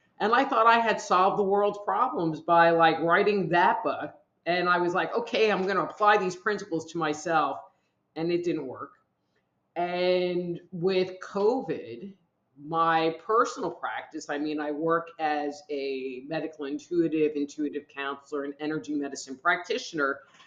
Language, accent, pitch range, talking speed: English, American, 150-195 Hz, 150 wpm